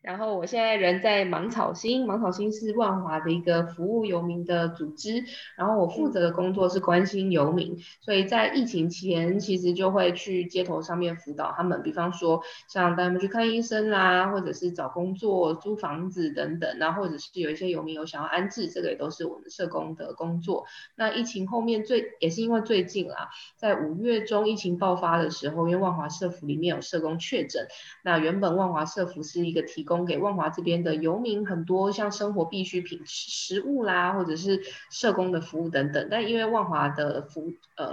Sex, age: female, 20-39